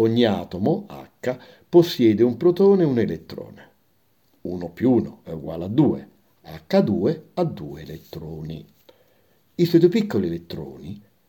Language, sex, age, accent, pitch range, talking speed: Italian, male, 60-79, native, 100-145 Hz, 135 wpm